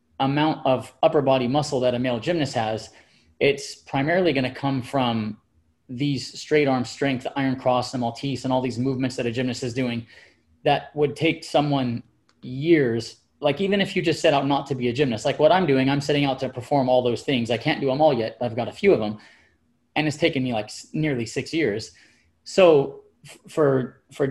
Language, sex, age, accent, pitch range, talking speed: English, male, 30-49, American, 125-150 Hz, 210 wpm